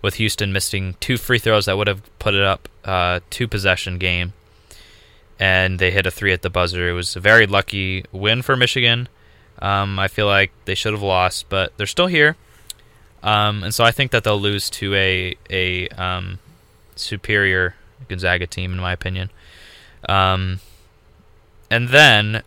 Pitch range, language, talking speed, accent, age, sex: 95-110 Hz, English, 175 wpm, American, 20-39, male